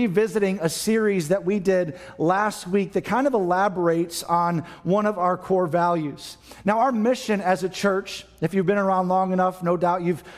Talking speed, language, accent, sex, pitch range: 190 wpm, English, American, male, 170-200 Hz